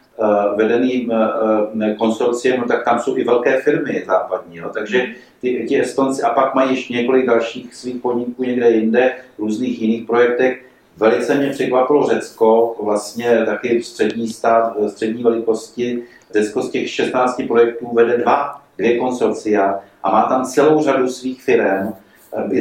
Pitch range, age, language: 115-135 Hz, 40-59, Slovak